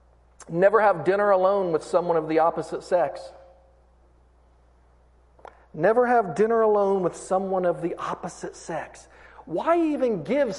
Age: 40-59